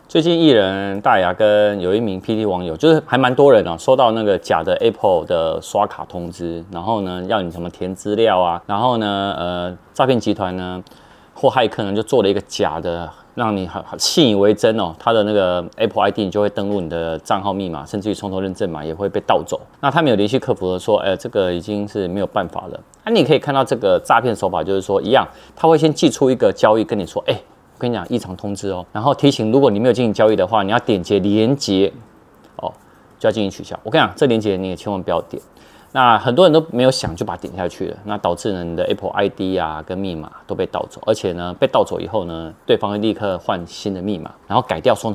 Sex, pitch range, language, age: male, 90-120 Hz, Chinese, 30-49